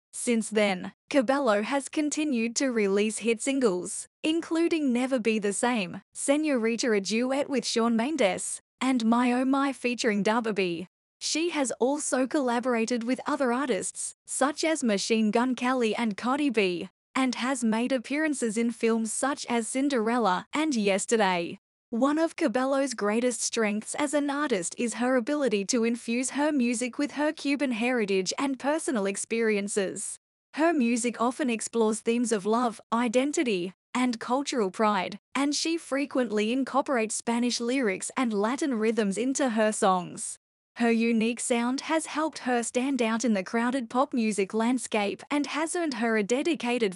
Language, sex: English, female